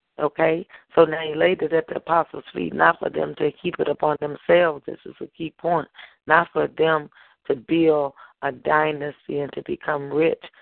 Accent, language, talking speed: American, English, 190 wpm